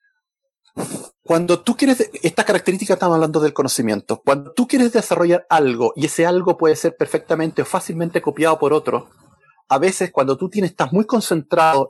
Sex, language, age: male, Spanish, 30-49